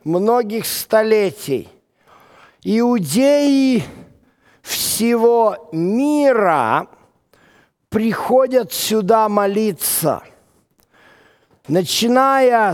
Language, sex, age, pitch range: Russian, male, 50-69, 175-220 Hz